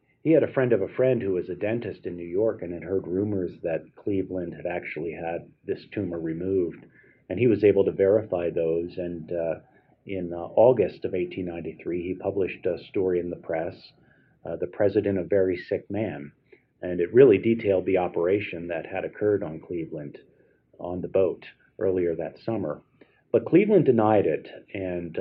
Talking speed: 180 wpm